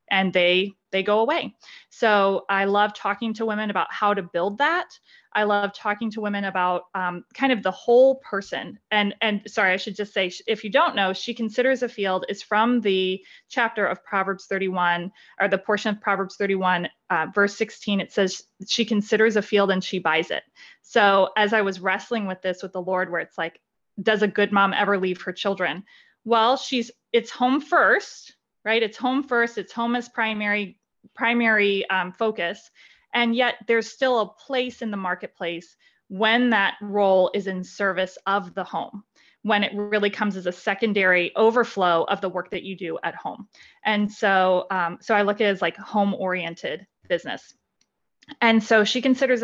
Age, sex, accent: 20-39, female, American